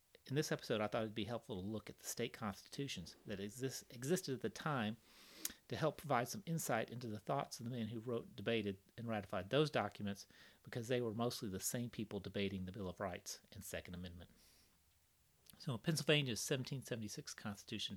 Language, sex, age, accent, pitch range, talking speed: English, male, 40-59, American, 95-125 Hz, 195 wpm